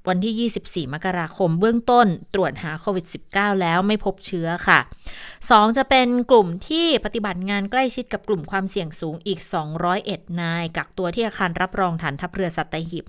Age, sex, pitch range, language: 20-39, female, 170-215 Hz, Thai